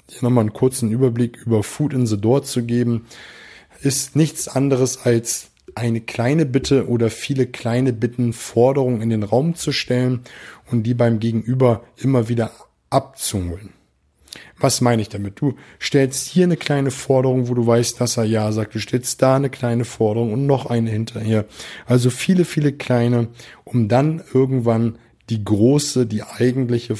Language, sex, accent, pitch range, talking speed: German, male, German, 115-135 Hz, 165 wpm